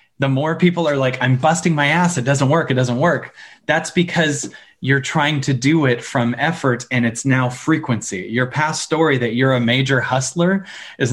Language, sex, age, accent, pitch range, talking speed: English, male, 20-39, American, 125-150 Hz, 200 wpm